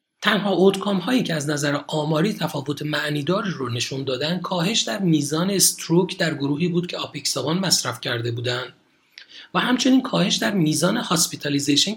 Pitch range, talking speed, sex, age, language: 135-180 Hz, 150 wpm, male, 40-59, Persian